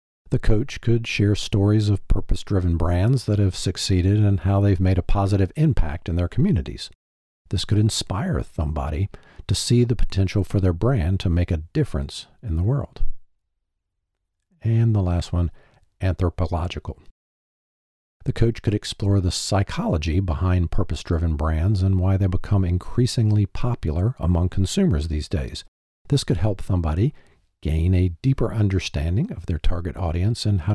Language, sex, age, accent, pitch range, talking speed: English, male, 50-69, American, 85-105 Hz, 150 wpm